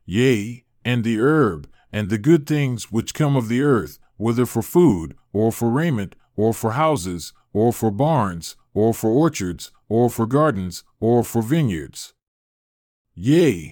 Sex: male